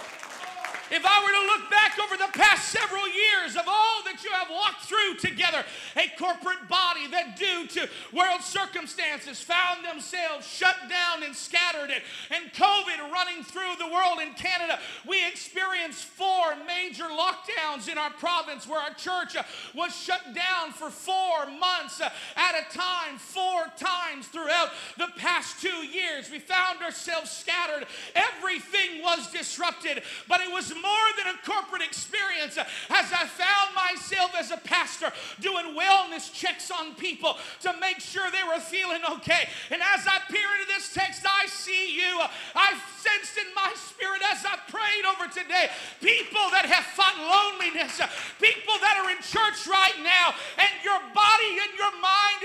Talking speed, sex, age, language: 160 wpm, male, 50-69, English